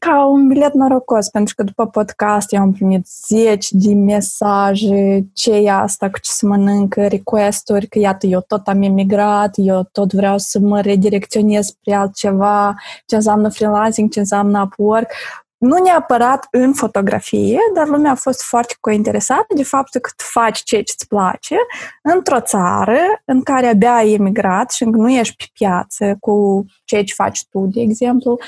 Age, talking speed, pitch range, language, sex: 20-39, 165 wpm, 205-245 Hz, Romanian, female